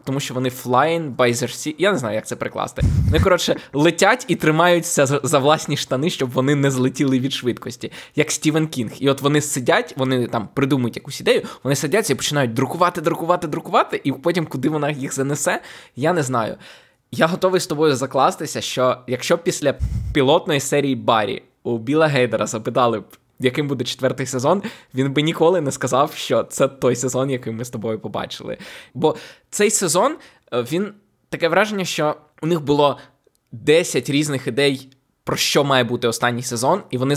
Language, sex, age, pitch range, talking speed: Ukrainian, male, 20-39, 125-155 Hz, 175 wpm